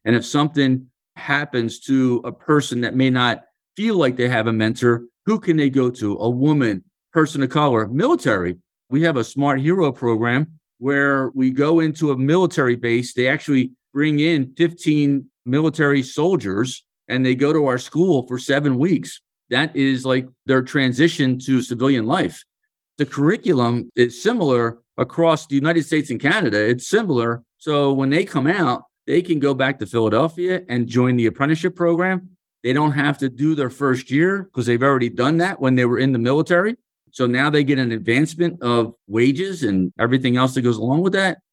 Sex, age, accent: male, 50-69, American